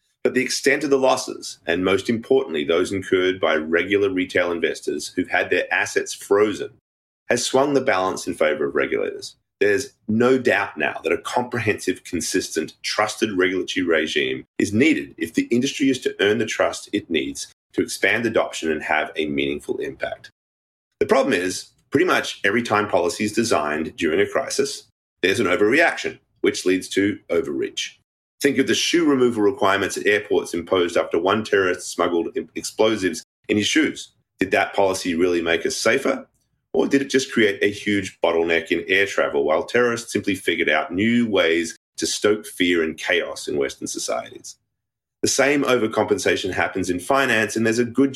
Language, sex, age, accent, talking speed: English, male, 30-49, Australian, 175 wpm